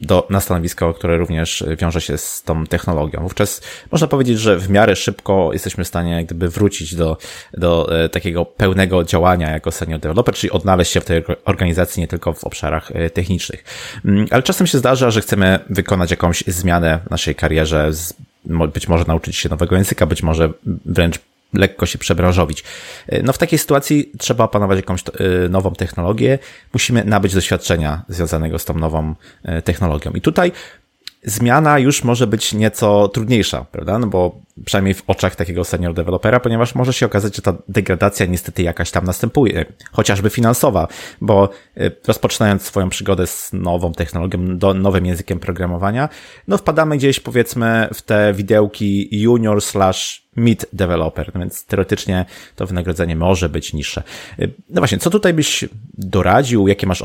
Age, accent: 20-39, native